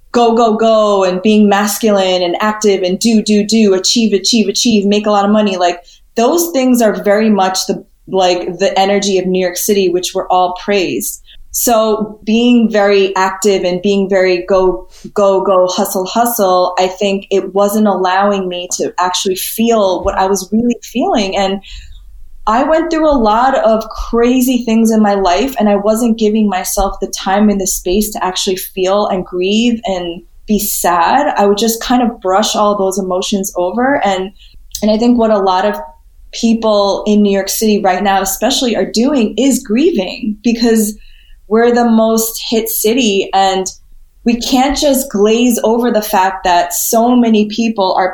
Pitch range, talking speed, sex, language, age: 190-225 Hz, 180 wpm, female, English, 20-39